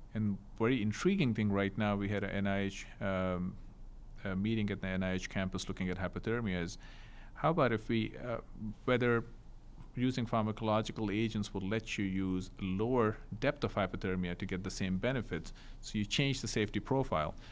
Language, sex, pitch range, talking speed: English, male, 95-115 Hz, 170 wpm